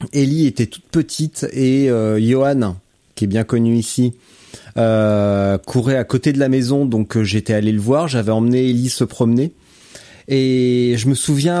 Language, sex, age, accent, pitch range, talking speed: French, male, 30-49, French, 120-150 Hz, 175 wpm